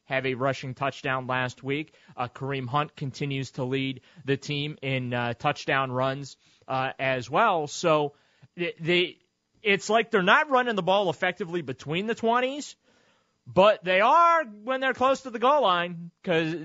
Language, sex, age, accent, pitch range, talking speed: English, male, 30-49, American, 125-165 Hz, 165 wpm